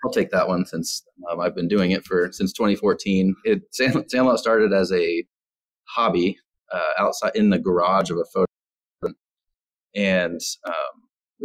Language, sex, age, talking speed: English, male, 30-49, 145 wpm